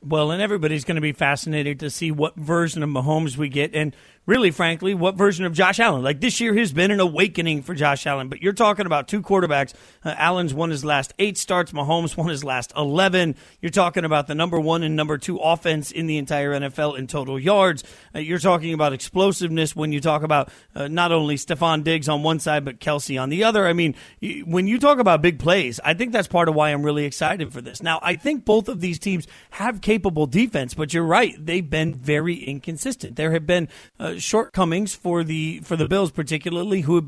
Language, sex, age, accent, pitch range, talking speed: English, male, 40-59, American, 150-190 Hz, 225 wpm